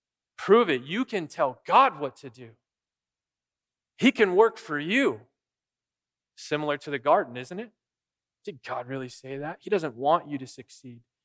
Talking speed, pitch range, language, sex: 165 wpm, 130-180 Hz, English, male